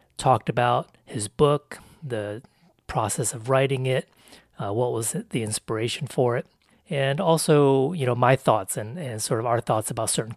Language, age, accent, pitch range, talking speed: English, 30-49, American, 110-140 Hz, 175 wpm